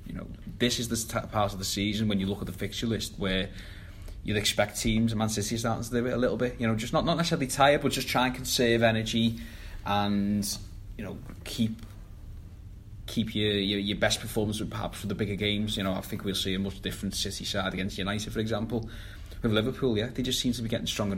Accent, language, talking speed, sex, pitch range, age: British, English, 235 wpm, male, 95-110 Hz, 20-39